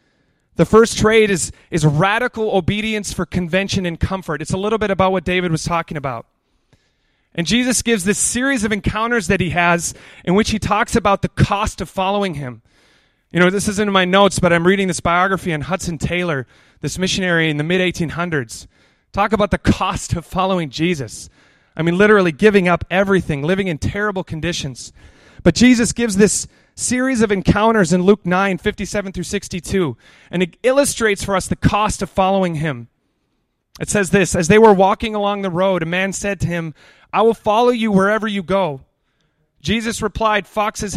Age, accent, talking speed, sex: 30-49, American, 185 wpm, male